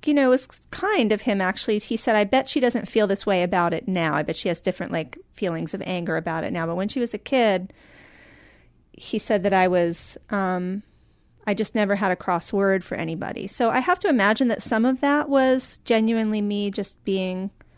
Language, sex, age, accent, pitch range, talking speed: English, female, 30-49, American, 180-220 Hz, 220 wpm